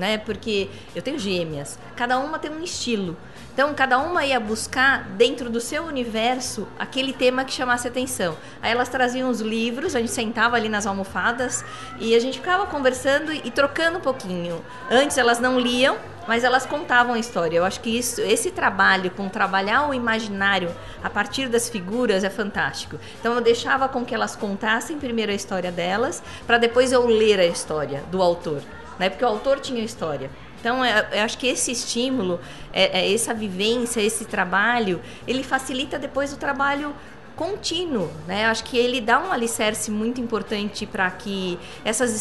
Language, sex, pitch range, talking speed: Portuguese, female, 210-260 Hz, 170 wpm